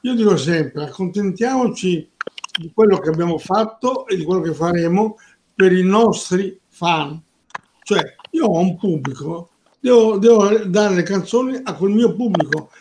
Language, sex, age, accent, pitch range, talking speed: Italian, male, 60-79, native, 165-210 Hz, 150 wpm